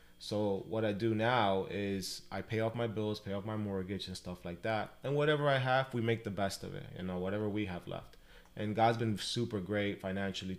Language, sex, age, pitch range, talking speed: Spanish, male, 20-39, 95-115 Hz, 230 wpm